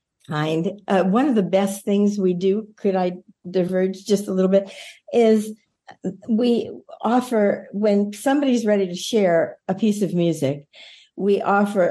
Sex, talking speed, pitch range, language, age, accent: female, 145 wpm, 175-215 Hz, English, 50-69, American